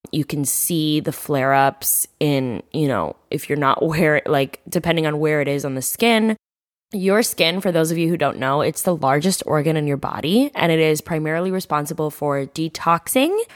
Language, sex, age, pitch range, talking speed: English, female, 10-29, 155-200 Hz, 200 wpm